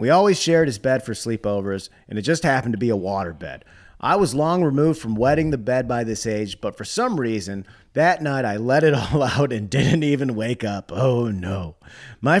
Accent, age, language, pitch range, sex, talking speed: American, 30-49, English, 110-155 Hz, male, 225 wpm